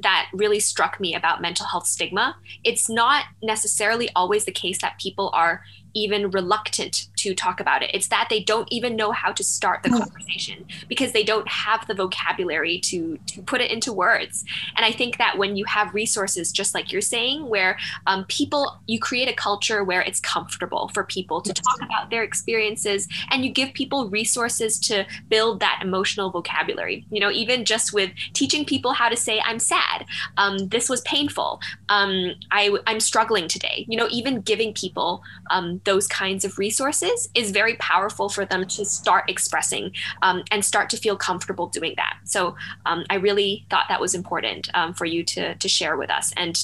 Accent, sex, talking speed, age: American, female, 190 wpm, 10-29